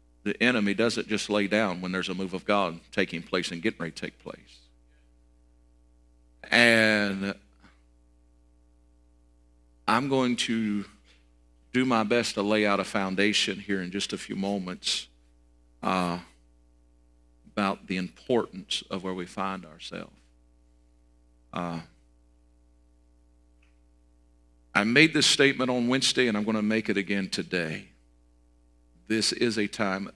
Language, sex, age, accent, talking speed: English, male, 50-69, American, 130 wpm